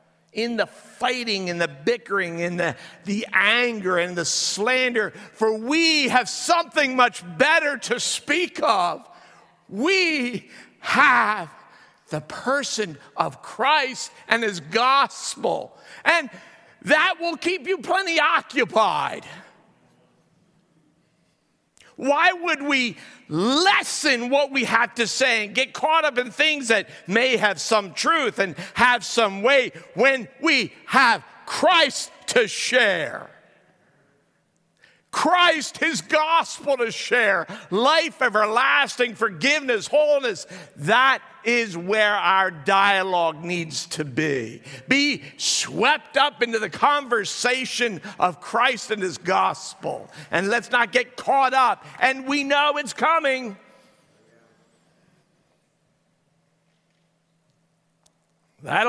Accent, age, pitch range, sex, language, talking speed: American, 50-69, 210-290 Hz, male, English, 110 wpm